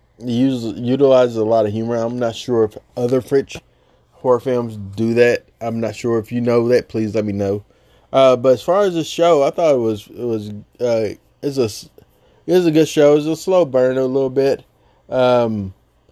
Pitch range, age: 110-135 Hz, 20-39